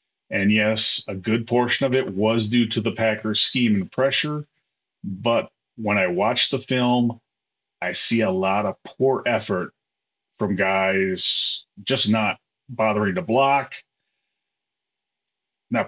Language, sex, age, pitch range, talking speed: English, male, 40-59, 105-135 Hz, 135 wpm